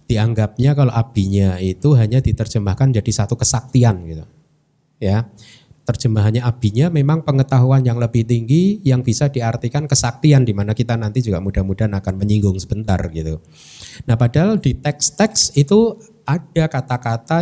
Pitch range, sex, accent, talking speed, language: 105-145 Hz, male, native, 130 wpm, Indonesian